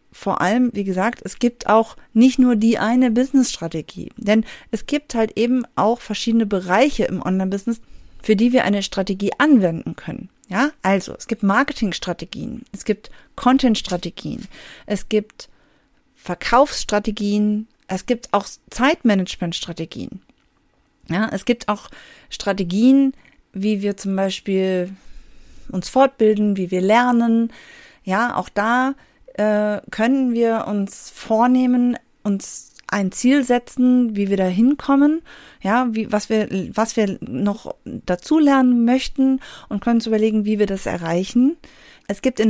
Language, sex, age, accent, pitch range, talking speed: German, female, 40-59, German, 200-245 Hz, 135 wpm